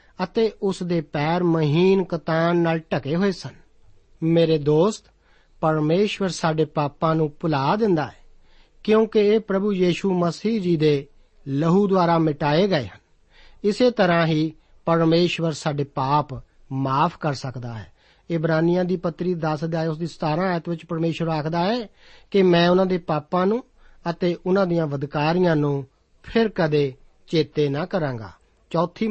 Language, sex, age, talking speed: Punjabi, male, 50-69, 150 wpm